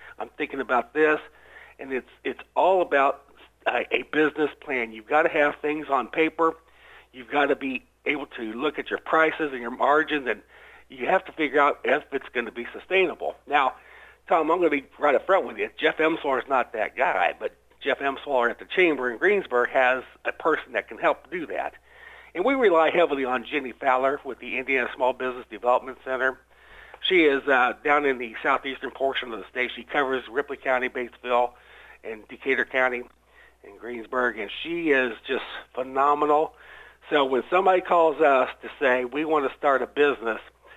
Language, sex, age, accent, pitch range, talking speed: English, male, 60-79, American, 125-160 Hz, 190 wpm